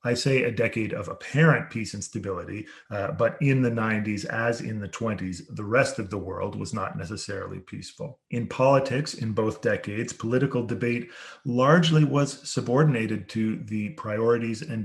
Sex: male